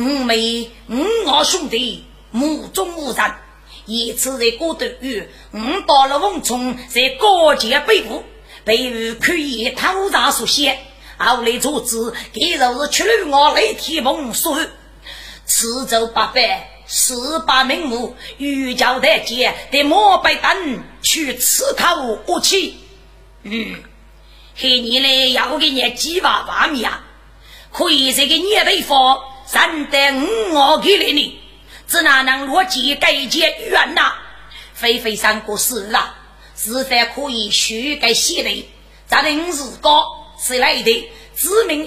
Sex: female